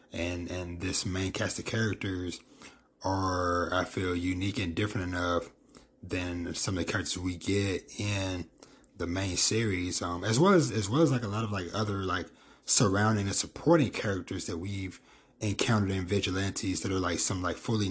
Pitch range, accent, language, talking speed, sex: 90-110 Hz, American, English, 180 wpm, male